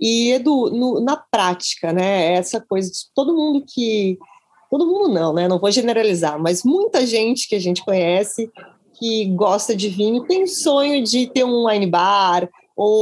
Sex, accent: female, Brazilian